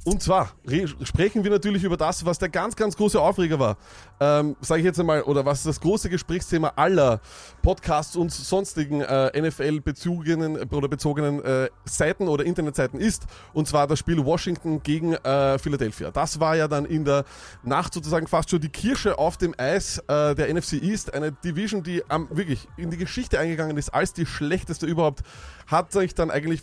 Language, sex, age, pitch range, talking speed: German, male, 20-39, 140-175 Hz, 185 wpm